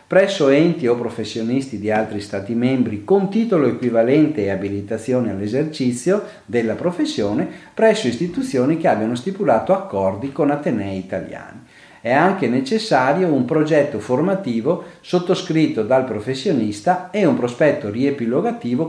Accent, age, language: native, 50-69, Italian